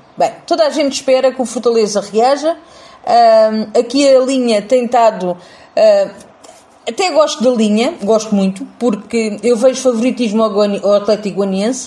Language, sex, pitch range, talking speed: Portuguese, female, 210-265 Hz, 145 wpm